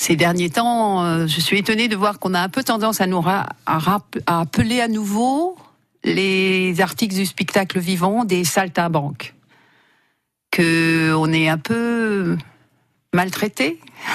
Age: 60-79